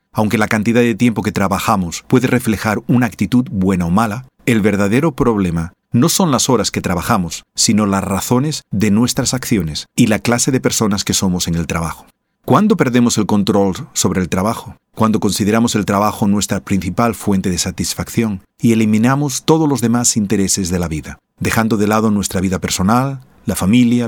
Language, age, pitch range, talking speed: Spanish, 40-59, 95-120 Hz, 180 wpm